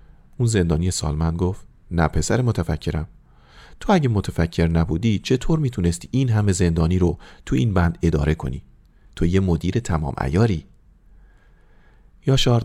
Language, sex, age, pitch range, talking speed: Persian, male, 40-59, 85-110 Hz, 135 wpm